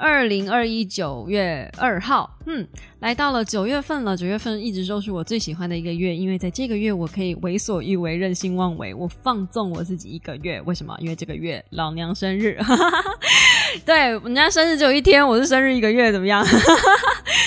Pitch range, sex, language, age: 180-230 Hz, female, Chinese, 20-39